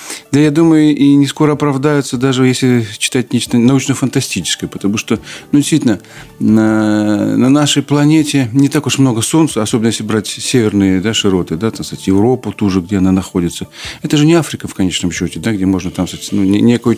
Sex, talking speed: male, 185 wpm